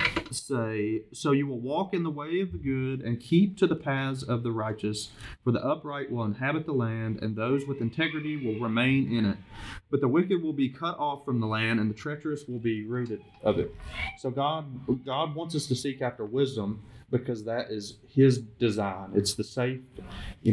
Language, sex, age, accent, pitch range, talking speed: English, male, 30-49, American, 110-140 Hz, 205 wpm